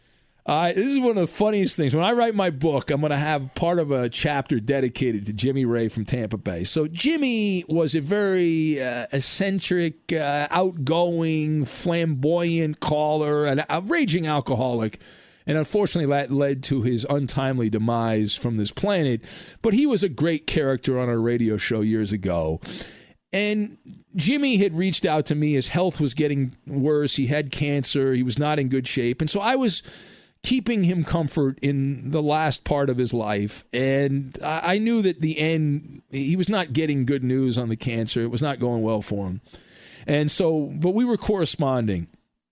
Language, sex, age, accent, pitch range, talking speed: English, male, 40-59, American, 125-170 Hz, 180 wpm